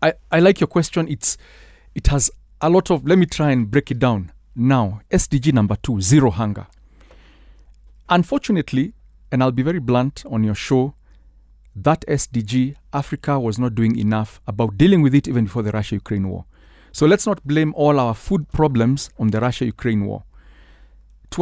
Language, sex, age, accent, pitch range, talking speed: English, male, 40-59, South African, 110-145 Hz, 175 wpm